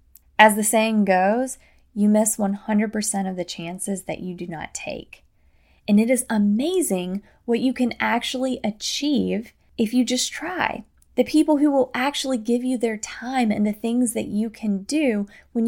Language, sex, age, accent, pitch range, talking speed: English, female, 20-39, American, 190-230 Hz, 170 wpm